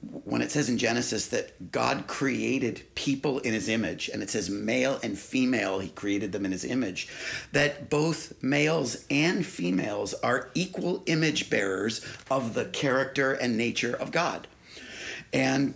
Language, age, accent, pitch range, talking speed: English, 50-69, American, 130-155 Hz, 155 wpm